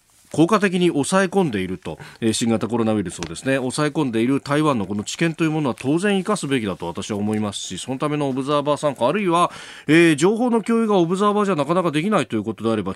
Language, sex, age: Japanese, male, 40-59